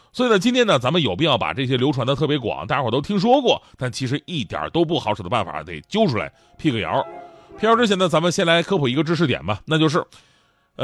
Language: Chinese